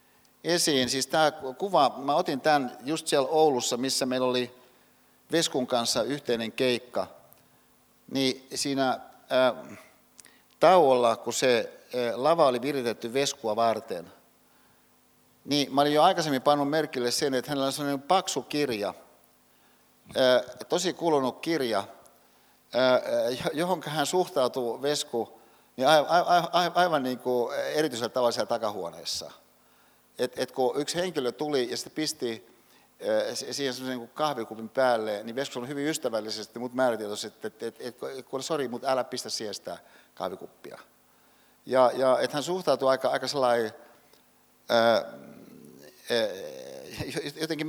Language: Finnish